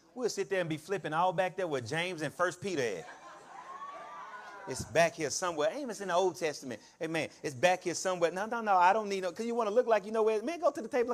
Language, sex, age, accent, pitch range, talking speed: English, male, 30-49, American, 150-230 Hz, 280 wpm